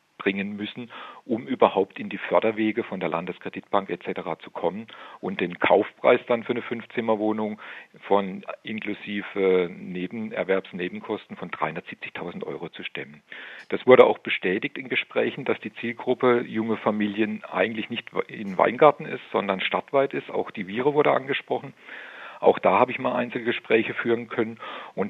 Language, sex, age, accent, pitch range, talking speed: German, male, 50-69, German, 100-120 Hz, 150 wpm